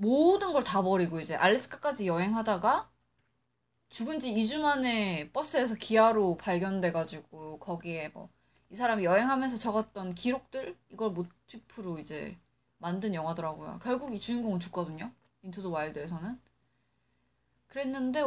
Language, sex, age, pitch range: Korean, female, 20-39, 180-280 Hz